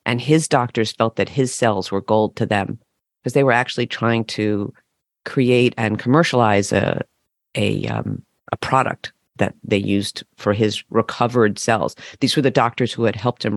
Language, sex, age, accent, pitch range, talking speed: English, female, 40-59, American, 110-135 Hz, 170 wpm